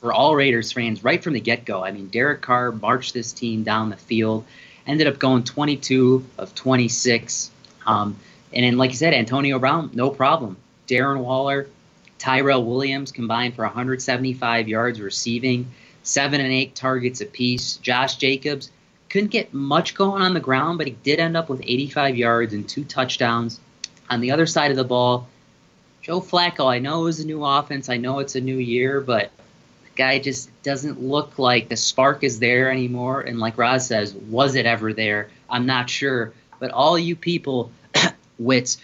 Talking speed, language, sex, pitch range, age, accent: 180 wpm, English, male, 120-140 Hz, 30-49, American